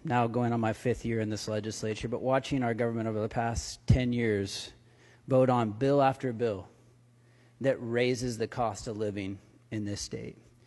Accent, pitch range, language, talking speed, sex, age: American, 120-155 Hz, English, 180 wpm, male, 30-49